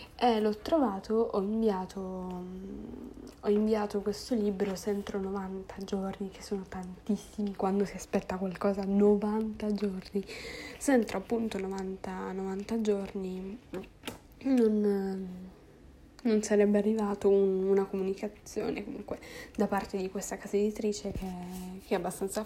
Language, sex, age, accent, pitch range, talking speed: Italian, female, 10-29, native, 190-210 Hz, 120 wpm